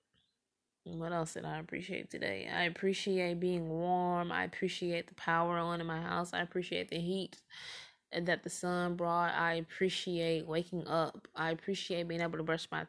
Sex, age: female, 20-39